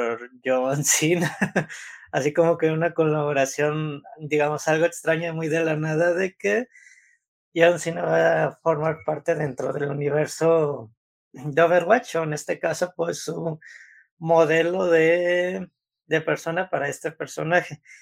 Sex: male